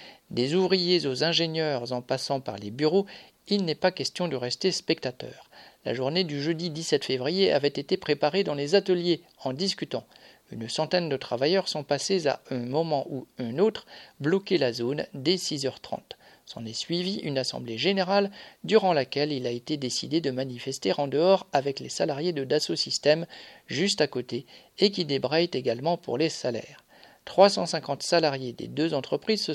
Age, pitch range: 50-69, 135-185 Hz